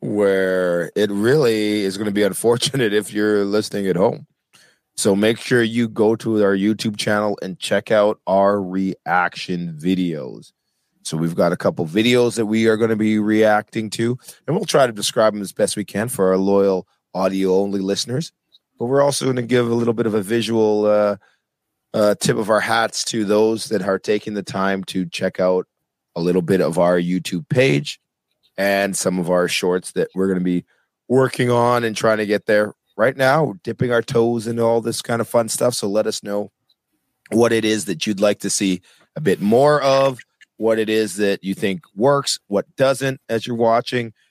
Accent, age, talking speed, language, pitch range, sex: American, 30-49, 200 wpm, English, 100-120 Hz, male